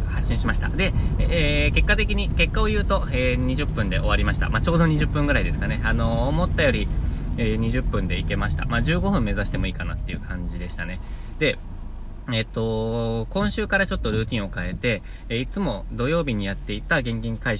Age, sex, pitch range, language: 20-39, male, 85-120 Hz, Japanese